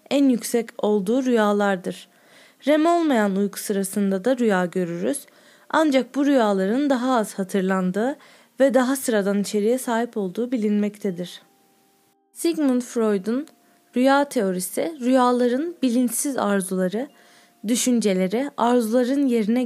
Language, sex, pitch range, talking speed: Turkish, female, 205-265 Hz, 105 wpm